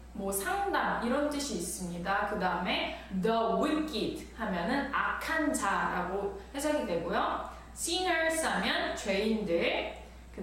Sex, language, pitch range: female, Korean, 205-310 Hz